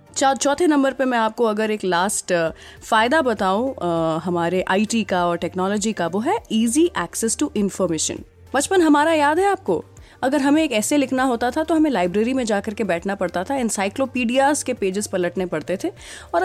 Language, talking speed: Hindi, 195 wpm